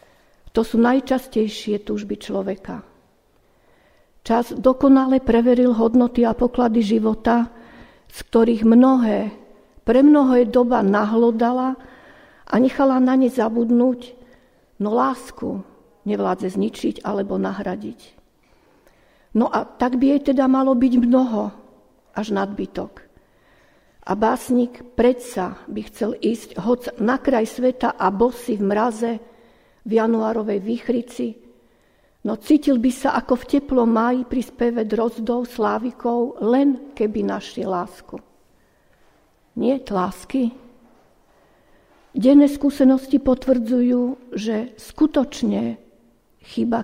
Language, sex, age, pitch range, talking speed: Slovak, female, 50-69, 215-255 Hz, 105 wpm